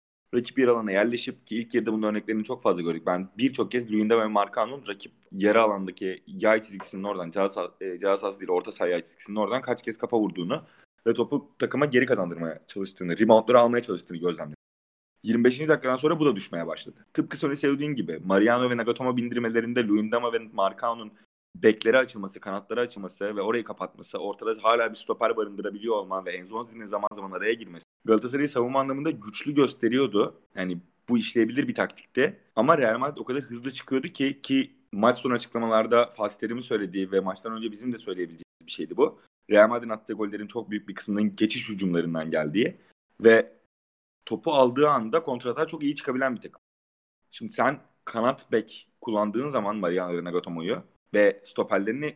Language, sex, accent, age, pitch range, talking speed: Turkish, male, native, 30-49, 100-125 Hz, 165 wpm